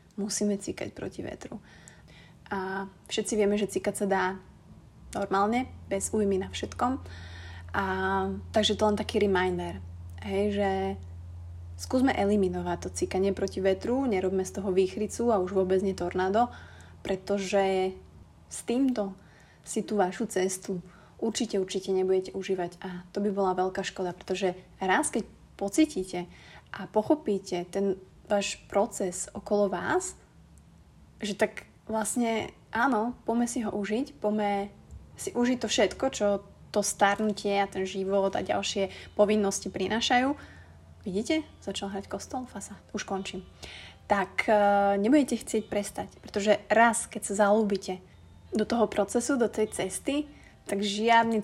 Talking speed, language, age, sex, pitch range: 135 wpm, Slovak, 20-39, female, 190-215 Hz